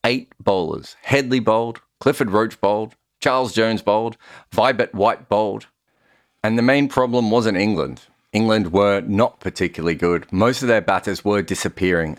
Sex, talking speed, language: male, 150 wpm, English